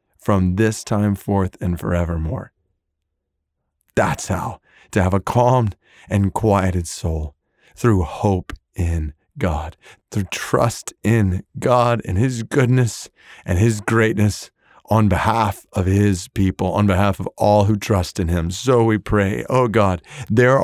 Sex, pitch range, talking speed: male, 100-145 Hz, 140 wpm